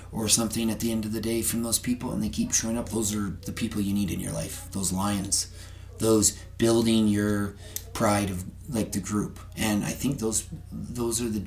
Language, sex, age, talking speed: English, male, 30-49, 220 wpm